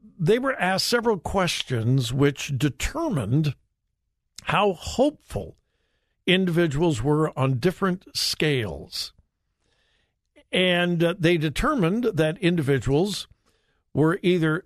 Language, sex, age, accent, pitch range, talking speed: English, male, 60-79, American, 130-190 Hz, 85 wpm